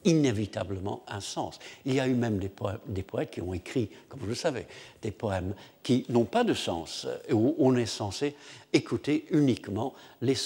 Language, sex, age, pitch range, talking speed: French, male, 60-79, 100-130 Hz, 195 wpm